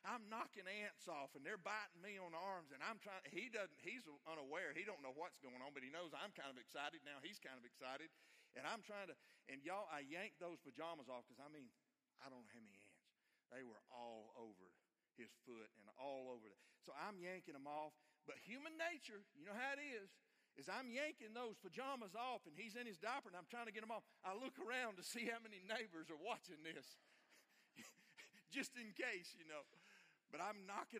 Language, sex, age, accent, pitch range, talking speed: English, male, 50-69, American, 145-245 Hz, 220 wpm